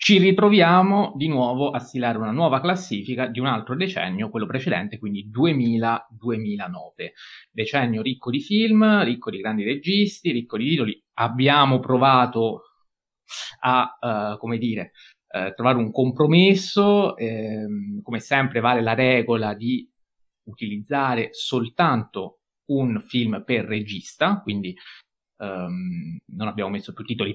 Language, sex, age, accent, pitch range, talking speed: Italian, male, 30-49, native, 110-155 Hz, 120 wpm